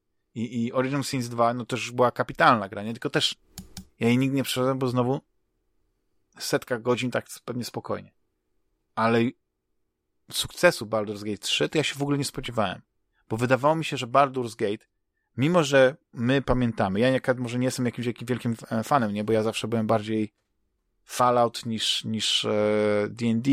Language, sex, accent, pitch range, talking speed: Polish, male, native, 110-125 Hz, 170 wpm